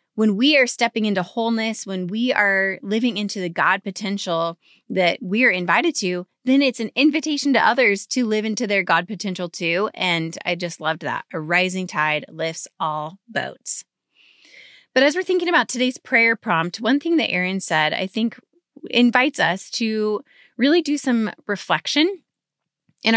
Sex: female